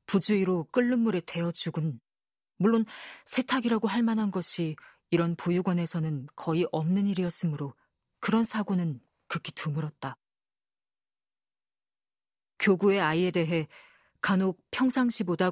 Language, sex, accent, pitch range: Korean, female, native, 165-205 Hz